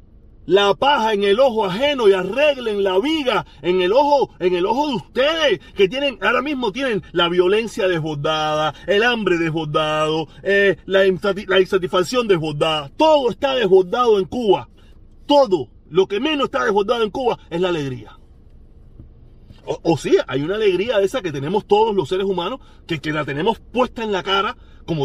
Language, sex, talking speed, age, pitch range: Spanish, male, 175 wpm, 40-59, 165-280 Hz